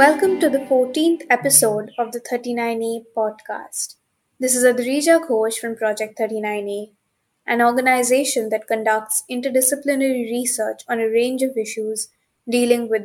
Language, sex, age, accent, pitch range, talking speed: English, female, 20-39, Indian, 225-265 Hz, 135 wpm